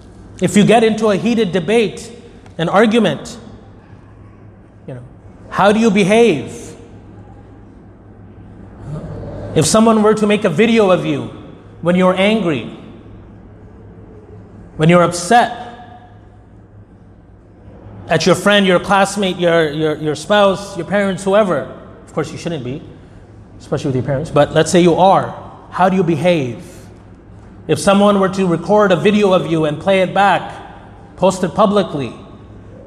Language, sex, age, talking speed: English, male, 30-49, 140 wpm